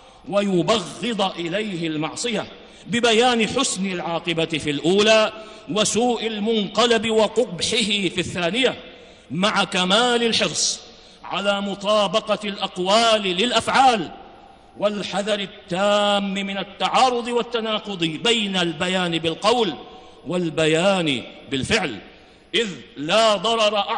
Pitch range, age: 175-215 Hz, 50-69